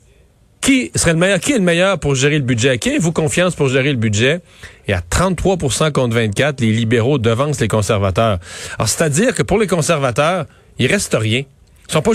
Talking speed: 210 wpm